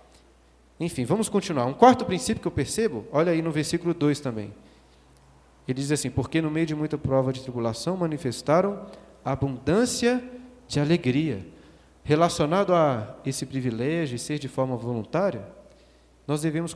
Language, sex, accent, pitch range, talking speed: Portuguese, male, Brazilian, 125-175 Hz, 145 wpm